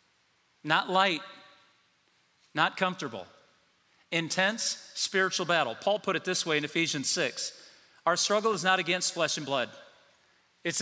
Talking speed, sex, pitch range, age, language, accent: 135 wpm, male, 170-200 Hz, 40-59, English, American